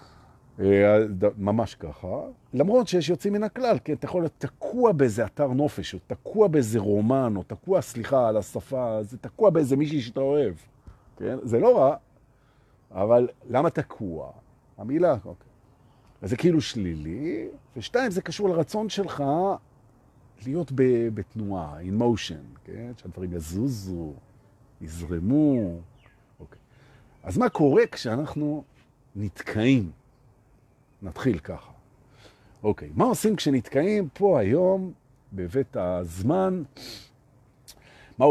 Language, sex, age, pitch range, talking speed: Hebrew, male, 50-69, 105-145 Hz, 100 wpm